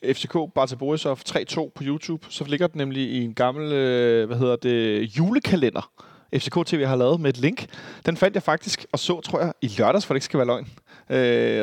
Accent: native